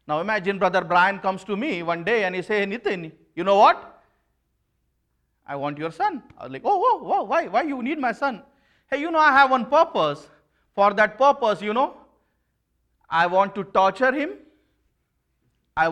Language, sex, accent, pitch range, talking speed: English, male, Indian, 125-190 Hz, 190 wpm